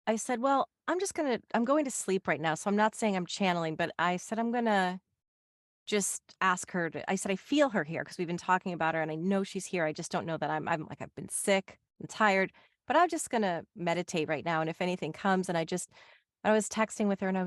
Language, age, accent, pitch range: English, 30-49, American, 165-215 Hz